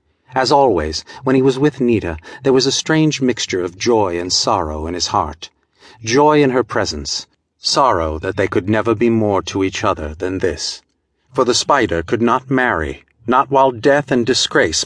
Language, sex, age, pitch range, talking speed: English, male, 50-69, 95-125 Hz, 185 wpm